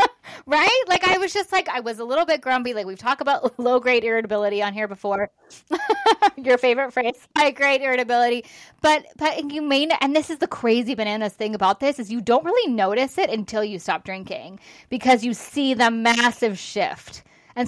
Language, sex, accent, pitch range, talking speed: English, female, American, 205-280 Hz, 195 wpm